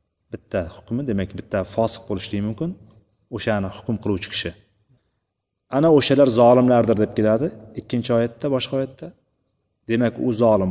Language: Bulgarian